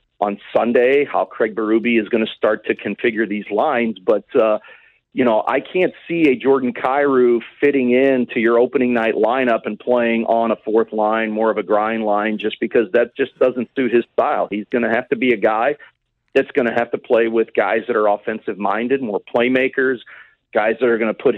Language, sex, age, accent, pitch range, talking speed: English, male, 40-59, American, 115-140 Hz, 215 wpm